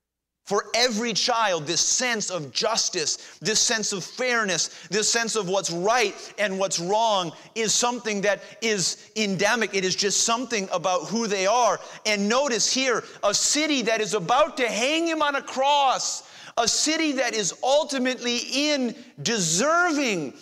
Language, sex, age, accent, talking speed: English, male, 30-49, American, 155 wpm